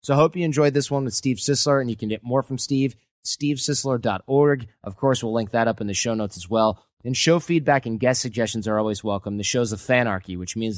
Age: 30-49